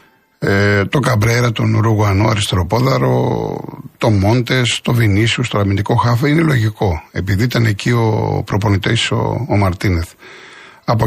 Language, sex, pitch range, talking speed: Greek, male, 110-140 Hz, 125 wpm